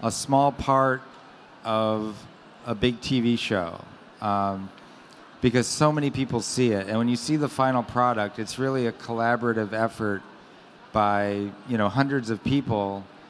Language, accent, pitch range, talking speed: German, American, 110-125 Hz, 150 wpm